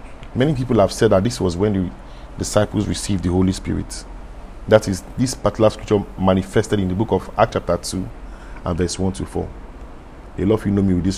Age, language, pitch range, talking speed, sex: 40-59, English, 85-100 Hz, 215 wpm, male